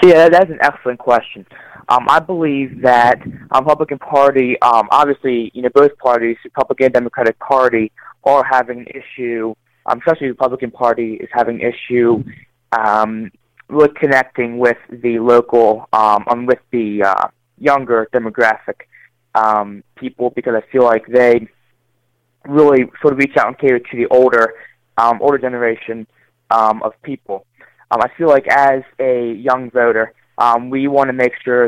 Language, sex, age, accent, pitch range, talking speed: English, male, 20-39, American, 120-130 Hz, 160 wpm